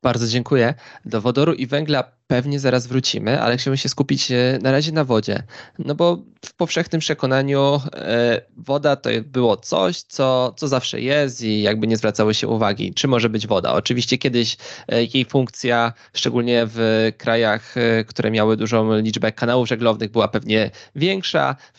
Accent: native